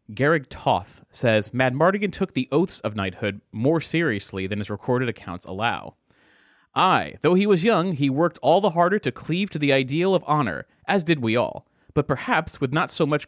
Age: 30-49